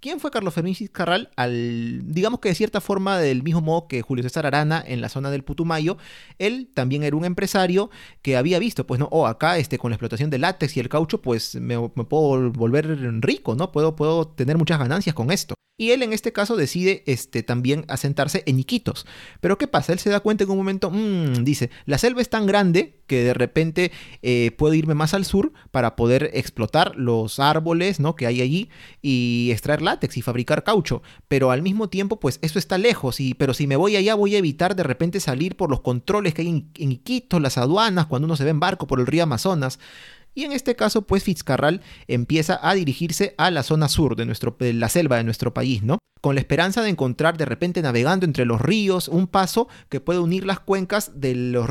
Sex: male